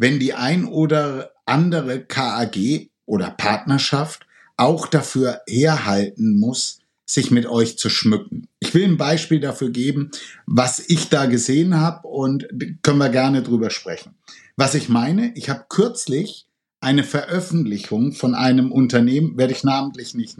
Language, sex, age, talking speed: German, male, 60-79, 145 wpm